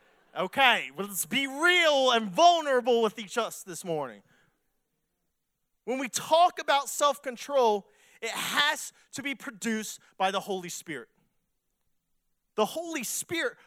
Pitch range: 195-265 Hz